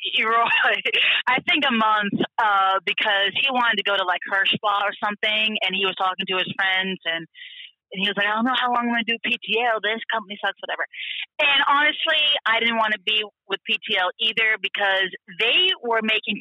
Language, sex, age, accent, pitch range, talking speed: English, female, 30-49, American, 215-300 Hz, 205 wpm